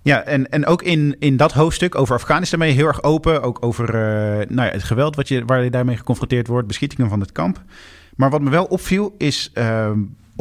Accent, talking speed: Dutch, 225 wpm